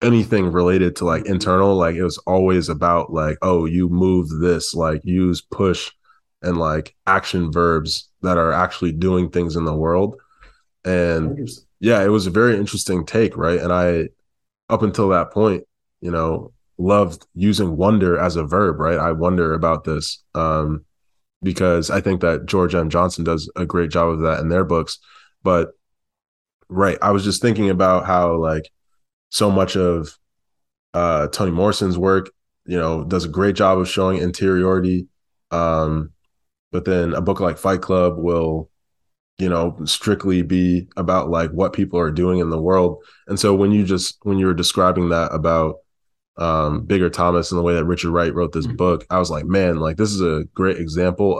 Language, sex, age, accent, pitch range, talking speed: English, male, 20-39, American, 80-95 Hz, 180 wpm